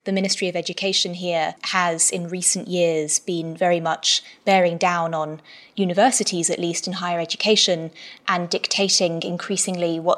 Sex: female